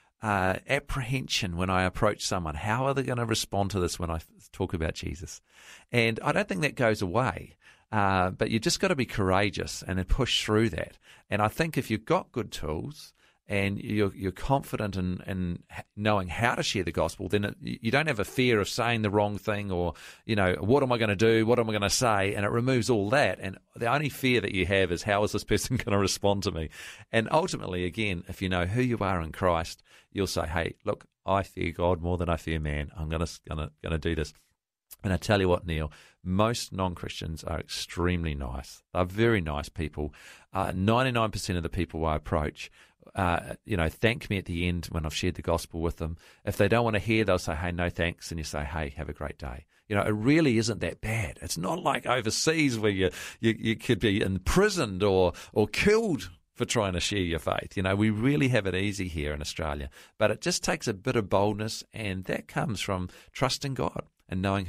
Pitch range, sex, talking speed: 85-115 Hz, male, 230 wpm